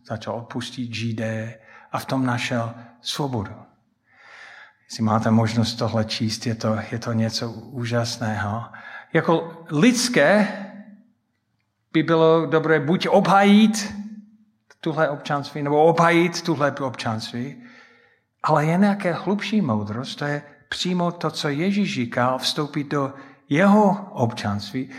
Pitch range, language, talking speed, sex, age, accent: 115-160 Hz, Czech, 115 wpm, male, 50-69, native